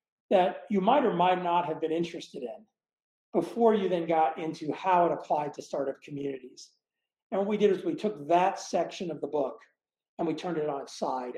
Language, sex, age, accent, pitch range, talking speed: English, male, 40-59, American, 150-190 Hz, 210 wpm